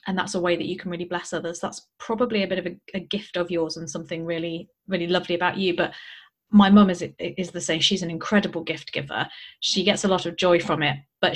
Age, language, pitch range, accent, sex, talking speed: 30-49, English, 170-210 Hz, British, female, 255 wpm